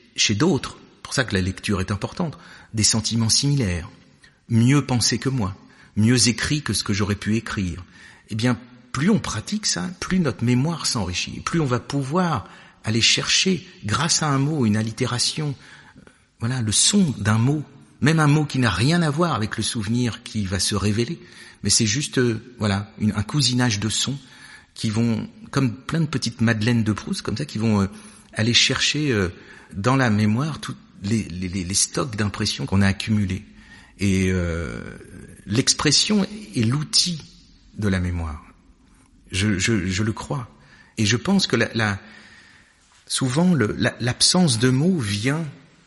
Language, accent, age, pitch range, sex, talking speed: French, French, 50-69, 100-135 Hz, male, 170 wpm